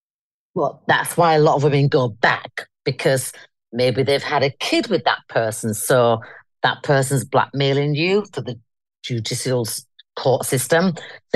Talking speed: 155 wpm